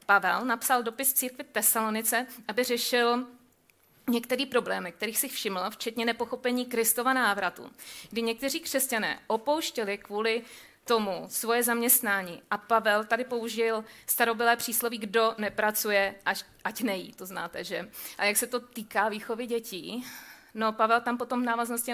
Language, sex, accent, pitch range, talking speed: Czech, female, native, 205-235 Hz, 140 wpm